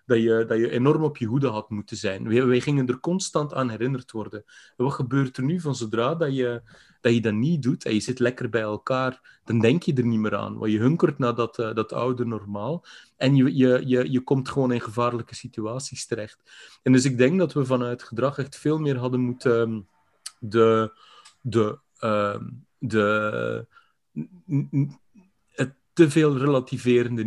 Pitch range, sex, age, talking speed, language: 115-135 Hz, male, 30-49, 195 wpm, Dutch